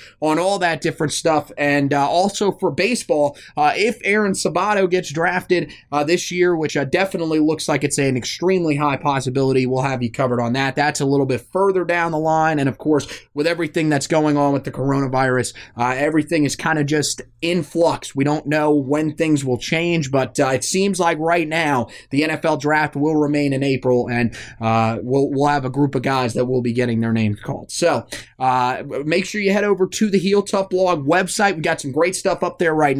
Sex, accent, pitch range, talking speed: male, American, 135-170 Hz, 220 wpm